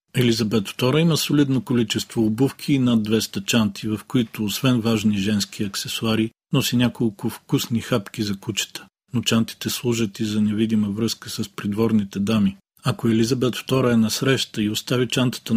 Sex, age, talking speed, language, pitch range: male, 40-59, 160 wpm, Bulgarian, 105-120 Hz